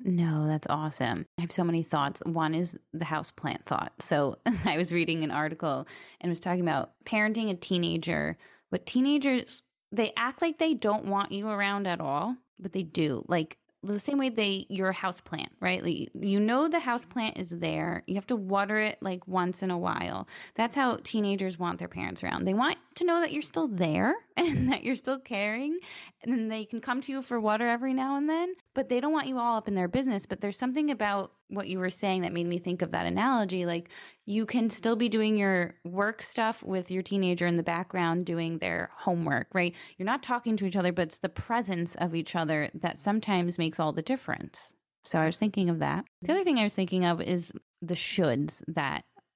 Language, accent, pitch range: English, American, 175-235 Hz